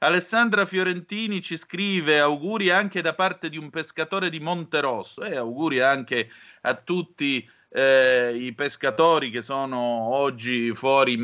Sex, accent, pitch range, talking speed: male, native, 115-160 Hz, 145 wpm